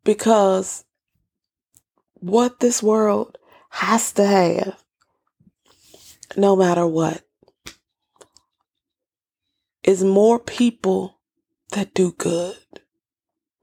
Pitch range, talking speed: 190-250 Hz, 70 wpm